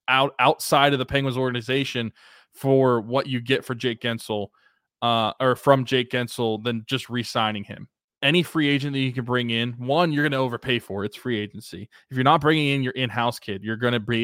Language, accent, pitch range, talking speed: English, American, 115-145 Hz, 220 wpm